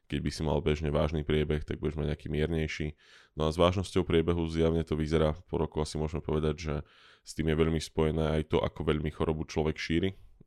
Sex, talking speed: male, 220 wpm